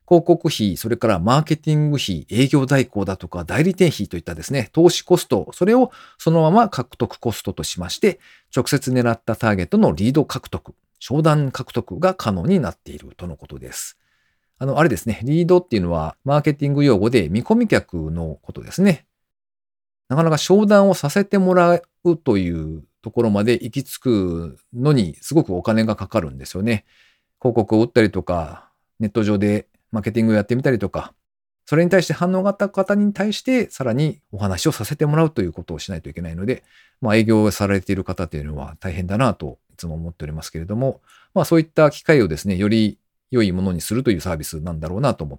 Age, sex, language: 40-59, male, Japanese